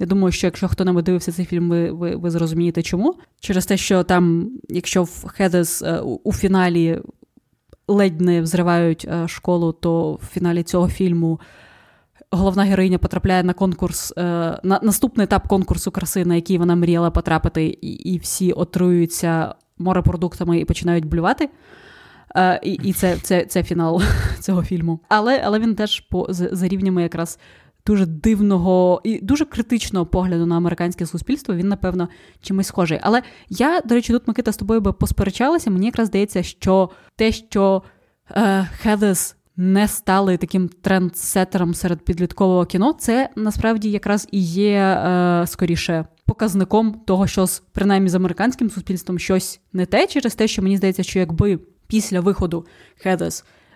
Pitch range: 175-200 Hz